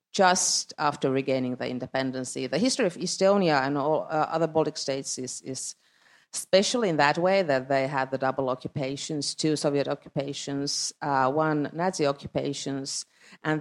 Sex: female